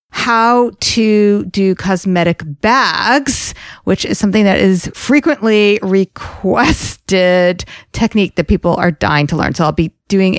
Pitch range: 185-230 Hz